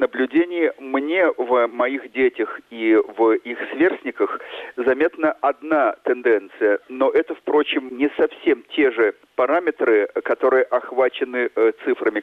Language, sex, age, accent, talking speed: Russian, male, 40-59, native, 110 wpm